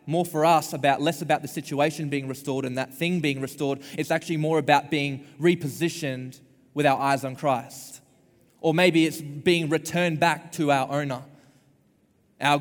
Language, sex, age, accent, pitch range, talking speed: English, male, 20-39, Australian, 130-155 Hz, 170 wpm